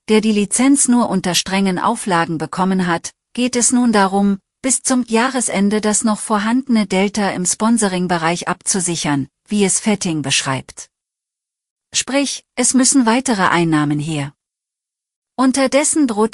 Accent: German